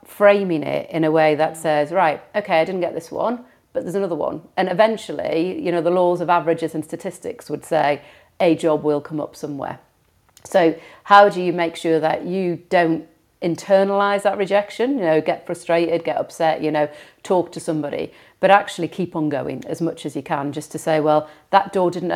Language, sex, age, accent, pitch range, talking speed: English, female, 40-59, British, 155-185 Hz, 205 wpm